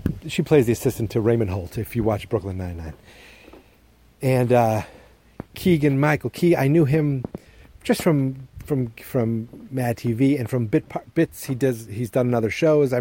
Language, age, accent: English, 30-49, American